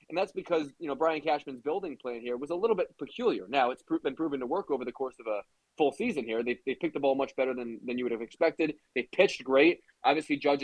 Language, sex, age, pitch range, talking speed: English, male, 20-39, 135-200 Hz, 270 wpm